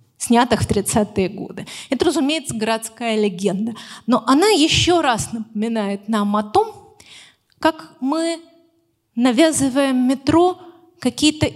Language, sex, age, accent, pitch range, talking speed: Russian, female, 30-49, native, 200-270 Hz, 110 wpm